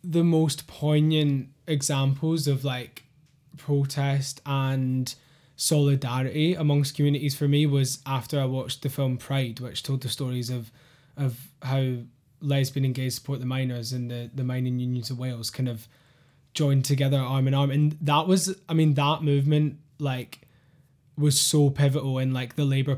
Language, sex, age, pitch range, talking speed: English, male, 10-29, 130-145 Hz, 160 wpm